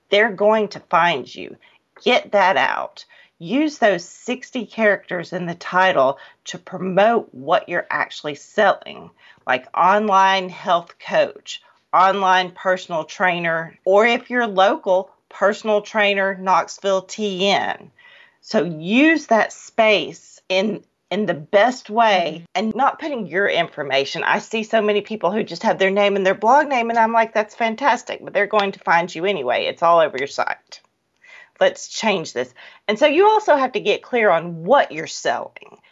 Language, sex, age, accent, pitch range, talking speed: English, female, 40-59, American, 185-245 Hz, 160 wpm